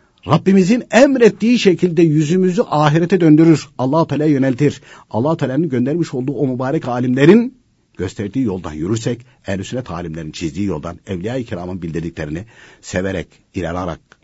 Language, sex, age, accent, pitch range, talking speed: Turkish, male, 60-79, native, 95-155 Hz, 120 wpm